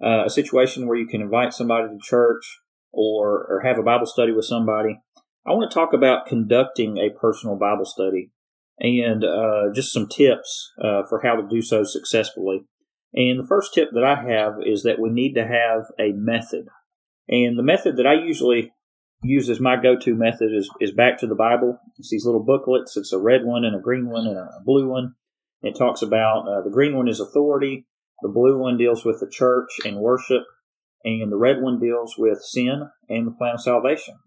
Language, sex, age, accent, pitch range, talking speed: English, male, 40-59, American, 110-130 Hz, 205 wpm